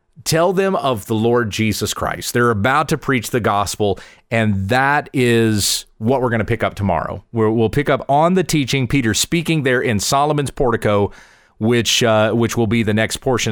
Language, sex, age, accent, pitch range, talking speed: English, male, 40-59, American, 110-145 Hz, 185 wpm